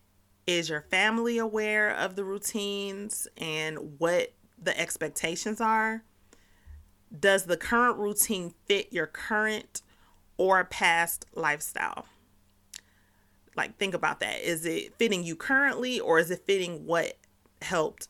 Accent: American